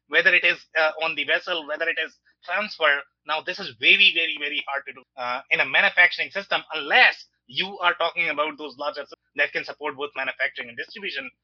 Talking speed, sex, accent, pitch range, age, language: 205 wpm, male, Indian, 145-200 Hz, 30-49, English